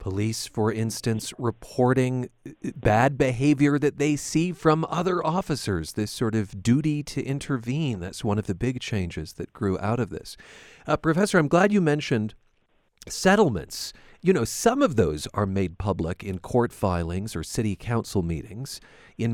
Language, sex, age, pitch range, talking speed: English, male, 40-59, 95-135 Hz, 160 wpm